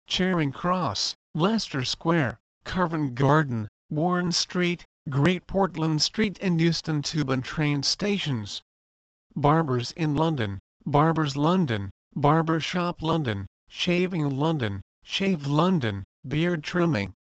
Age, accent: 50-69, American